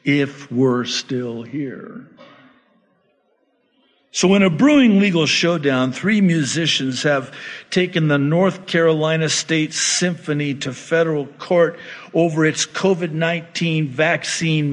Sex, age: male, 50-69